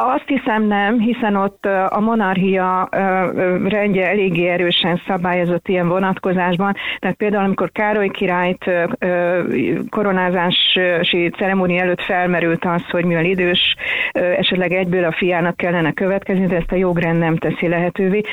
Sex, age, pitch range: female, 40-59, 175-195 Hz